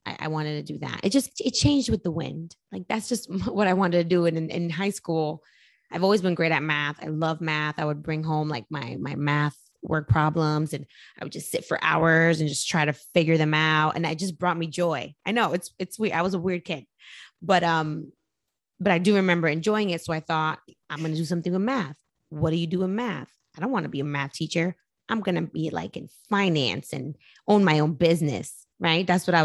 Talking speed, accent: 250 wpm, American